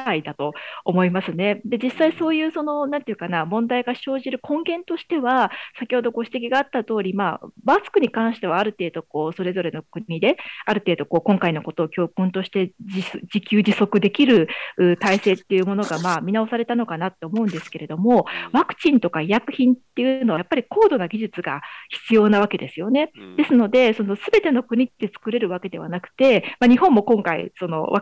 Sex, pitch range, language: female, 180-255 Hz, Japanese